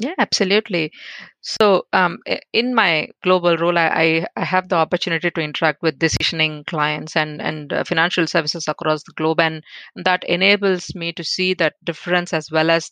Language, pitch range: English, 155-185 Hz